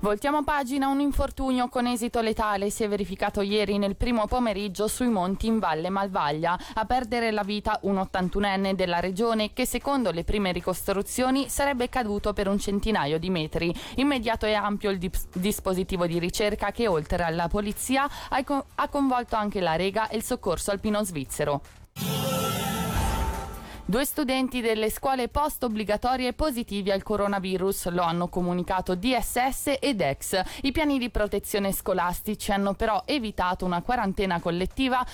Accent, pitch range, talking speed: native, 185-245 Hz, 150 wpm